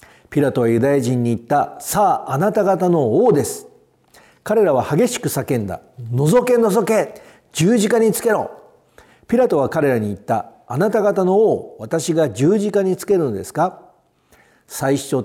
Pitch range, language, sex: 120-195 Hz, Japanese, male